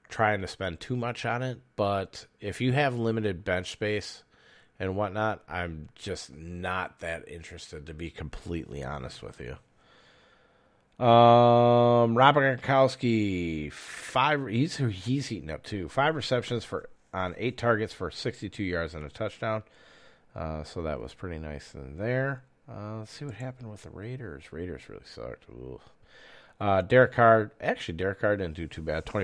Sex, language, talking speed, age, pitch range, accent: male, English, 160 wpm, 40-59, 85-115 Hz, American